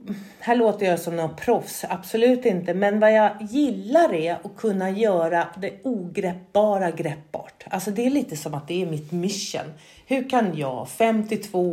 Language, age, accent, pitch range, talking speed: Swedish, 40-59, native, 165-235 Hz, 170 wpm